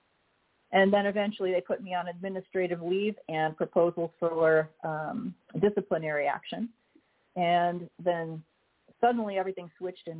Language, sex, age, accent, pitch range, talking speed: English, female, 40-59, American, 170-205 Hz, 125 wpm